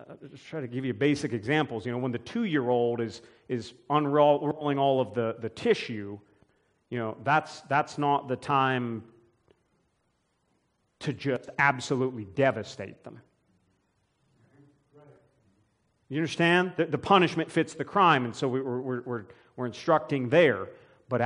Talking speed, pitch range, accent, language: 140 wpm, 125-175 Hz, American, English